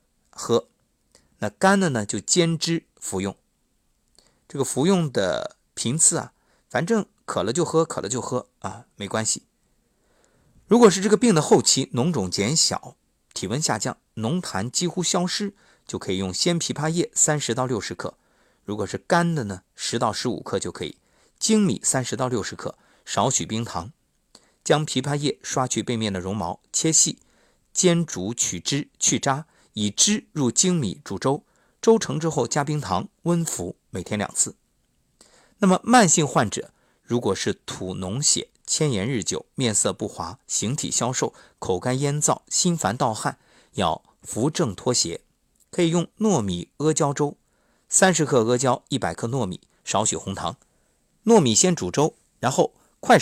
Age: 50-69